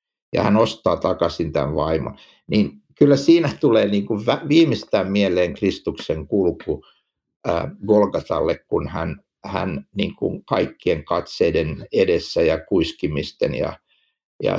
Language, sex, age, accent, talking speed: Finnish, male, 60-79, native, 115 wpm